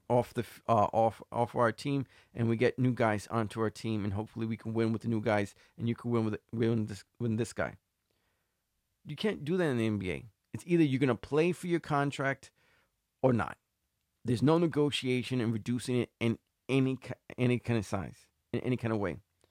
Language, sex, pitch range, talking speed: English, male, 110-140 Hz, 210 wpm